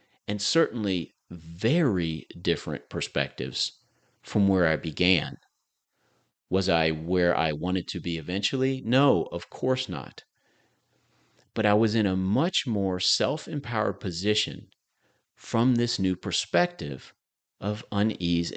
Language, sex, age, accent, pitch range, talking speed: English, male, 40-59, American, 90-125 Hz, 115 wpm